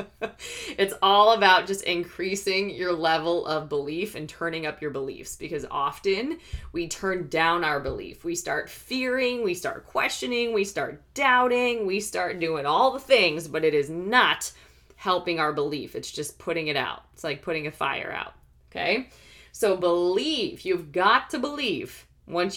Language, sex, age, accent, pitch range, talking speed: English, female, 20-39, American, 150-210 Hz, 165 wpm